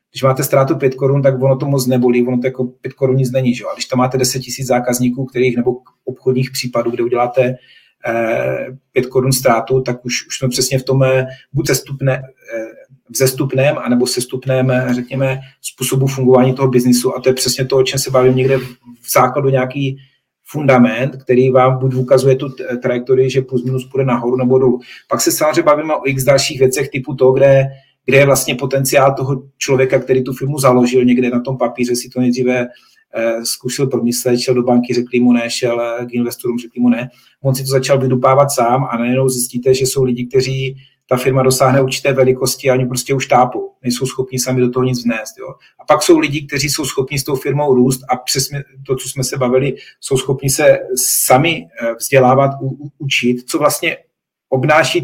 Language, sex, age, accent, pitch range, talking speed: Czech, male, 30-49, native, 125-135 Hz, 205 wpm